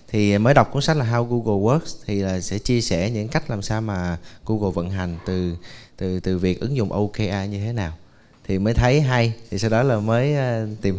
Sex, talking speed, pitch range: male, 230 wpm, 100-130 Hz